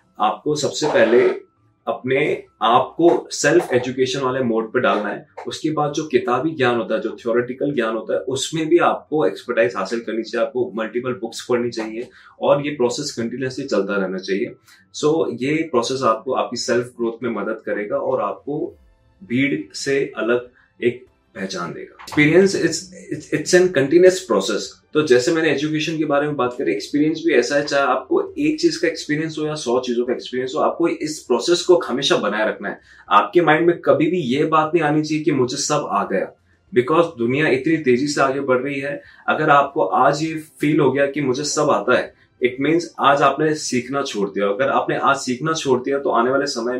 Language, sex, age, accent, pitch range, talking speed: Hindi, male, 30-49, native, 125-165 Hz, 195 wpm